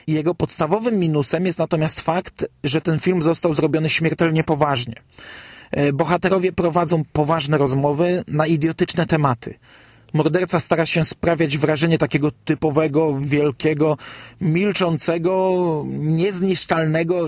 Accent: native